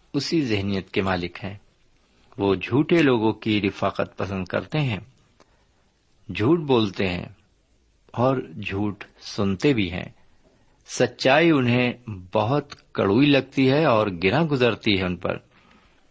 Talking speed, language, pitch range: 125 wpm, Urdu, 100-140 Hz